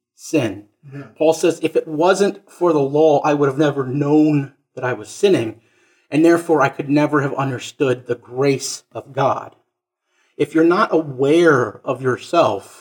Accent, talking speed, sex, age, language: American, 165 wpm, male, 40-59, English